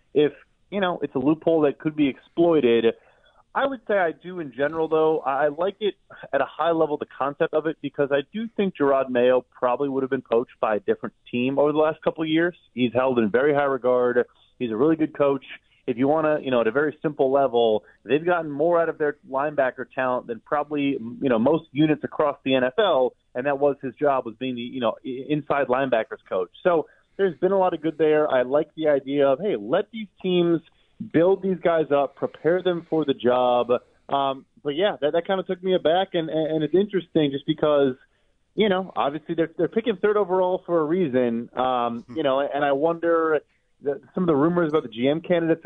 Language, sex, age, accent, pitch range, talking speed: English, male, 30-49, American, 135-170 Hz, 225 wpm